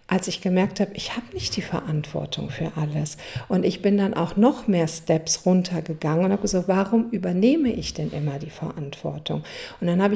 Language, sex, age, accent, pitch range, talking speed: German, female, 50-69, German, 160-205 Hz, 200 wpm